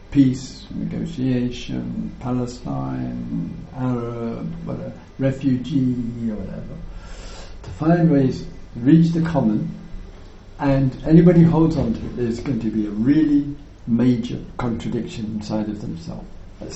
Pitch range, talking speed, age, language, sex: 105-160 Hz, 120 wpm, 60-79, English, male